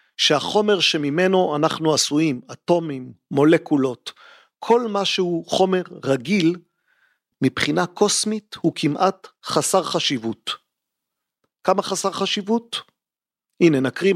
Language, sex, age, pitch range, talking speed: Hebrew, male, 40-59, 150-195 Hz, 95 wpm